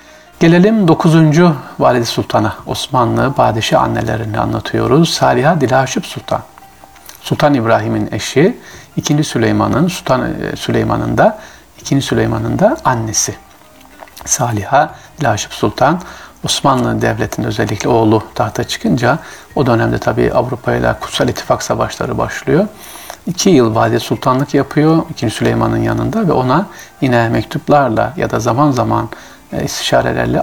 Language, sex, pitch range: Turkish, male, 110-155 Hz